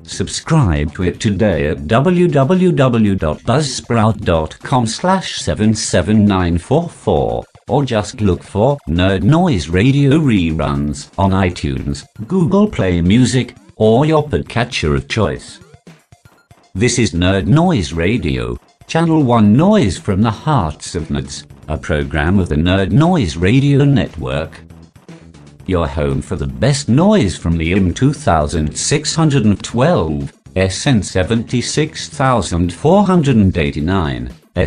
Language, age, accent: English, 50-69, British